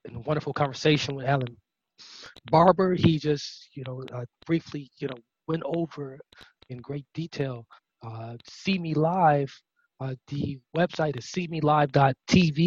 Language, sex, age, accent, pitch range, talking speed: English, male, 20-39, American, 130-160 Hz, 135 wpm